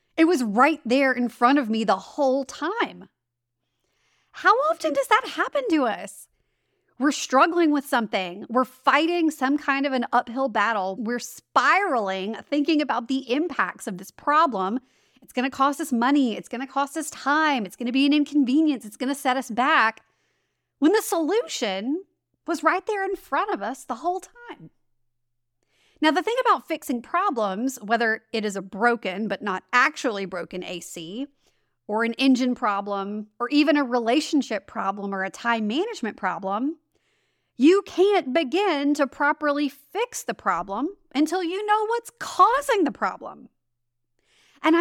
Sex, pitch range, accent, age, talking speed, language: female, 220-315 Hz, American, 30-49, 165 wpm, English